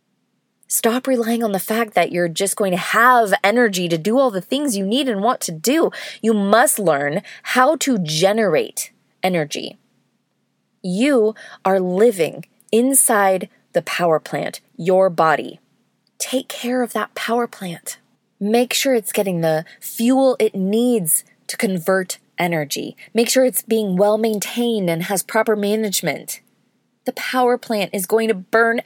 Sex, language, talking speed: female, English, 150 wpm